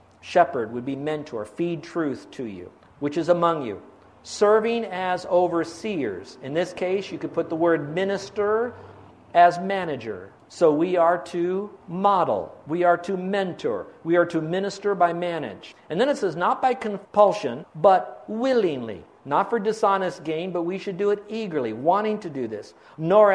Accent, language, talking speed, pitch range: American, English, 165 wpm, 145-185 Hz